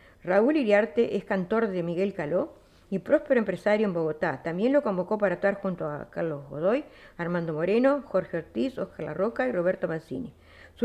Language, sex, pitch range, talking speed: Spanish, female, 185-230 Hz, 175 wpm